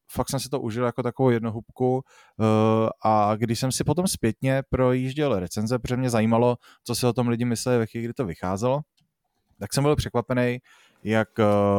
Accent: native